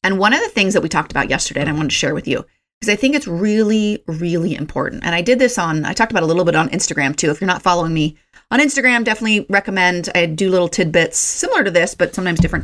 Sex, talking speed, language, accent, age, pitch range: female, 270 wpm, English, American, 30-49, 160-215 Hz